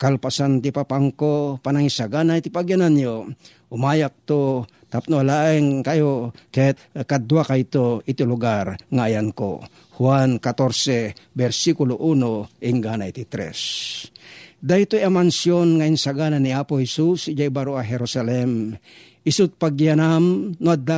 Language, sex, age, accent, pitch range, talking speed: Filipino, male, 50-69, native, 125-150 Hz, 115 wpm